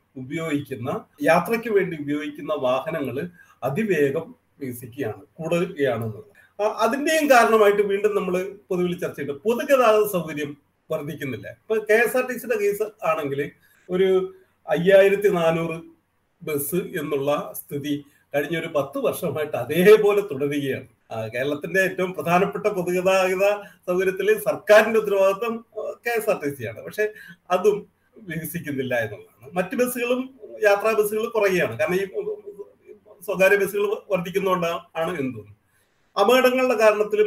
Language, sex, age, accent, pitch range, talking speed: Malayalam, male, 40-59, native, 145-210 Hz, 110 wpm